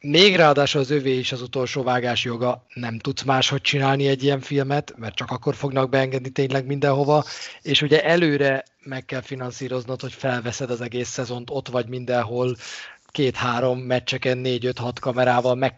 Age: 30-49